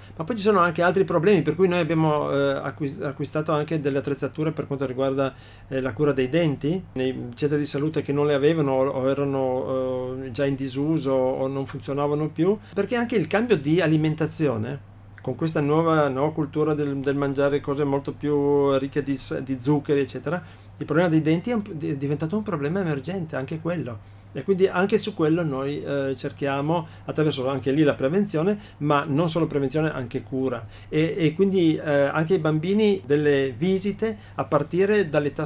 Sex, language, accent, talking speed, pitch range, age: male, Italian, native, 175 wpm, 140-160 Hz, 40-59